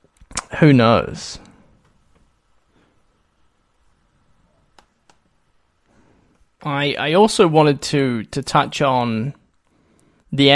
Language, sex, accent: English, male, Australian